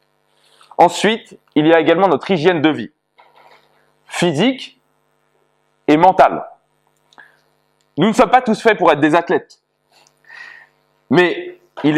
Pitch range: 145-190 Hz